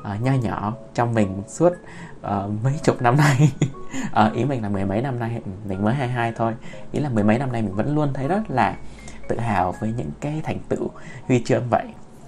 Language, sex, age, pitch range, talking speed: Vietnamese, male, 20-39, 105-140 Hz, 215 wpm